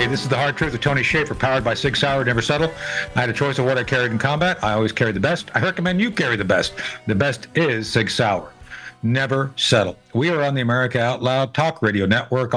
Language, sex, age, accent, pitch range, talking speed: English, male, 60-79, American, 115-160 Hz, 255 wpm